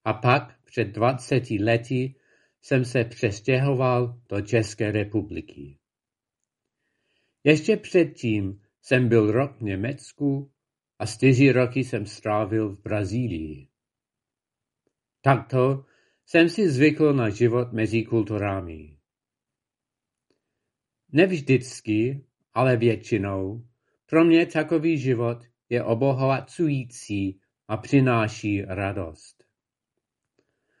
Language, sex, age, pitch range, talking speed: Czech, male, 50-69, 110-140 Hz, 90 wpm